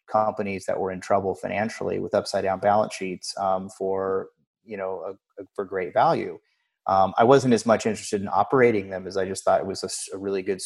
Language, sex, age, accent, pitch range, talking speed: English, male, 30-49, American, 95-105 Hz, 210 wpm